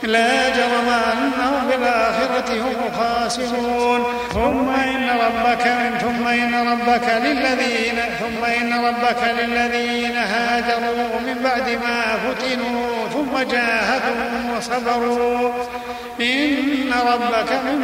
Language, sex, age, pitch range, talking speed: Arabic, male, 50-69, 235-245 Hz, 100 wpm